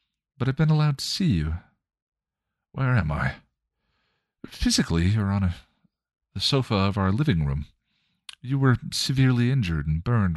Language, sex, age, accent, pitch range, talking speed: English, male, 40-59, American, 80-115 Hz, 145 wpm